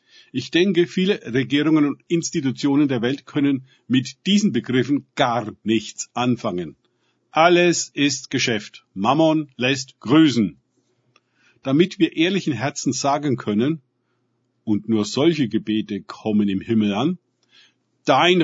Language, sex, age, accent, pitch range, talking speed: German, male, 50-69, German, 120-160 Hz, 115 wpm